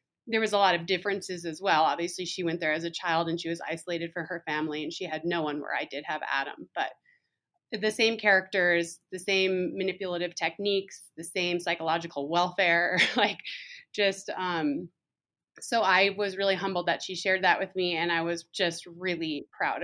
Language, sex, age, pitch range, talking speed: English, female, 20-39, 165-190 Hz, 195 wpm